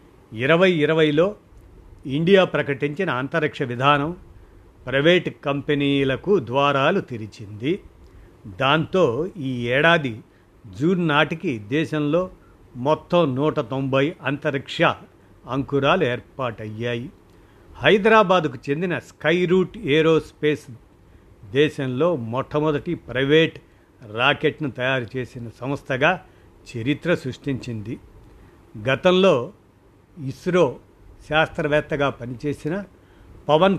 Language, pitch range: Telugu, 110-155 Hz